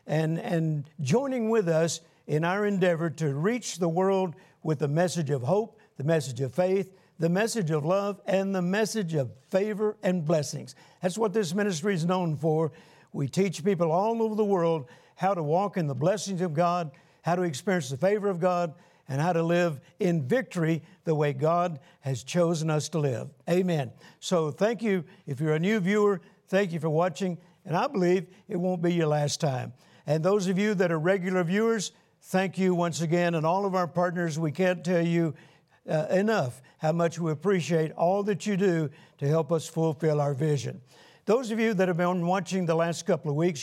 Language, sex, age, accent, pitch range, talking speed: English, male, 60-79, American, 160-195 Hz, 200 wpm